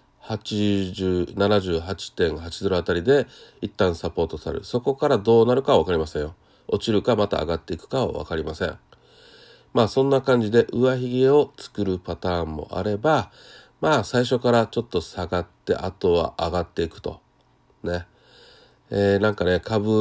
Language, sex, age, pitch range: Japanese, male, 40-59, 90-120 Hz